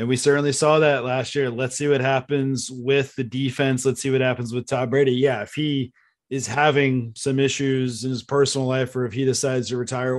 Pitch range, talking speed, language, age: 130-150 Hz, 225 wpm, English, 30-49